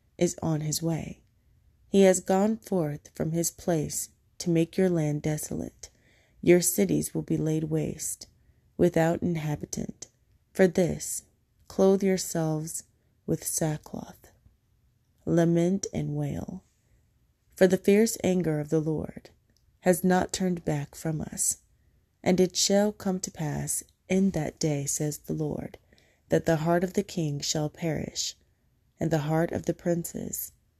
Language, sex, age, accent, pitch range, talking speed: English, female, 30-49, American, 150-185 Hz, 140 wpm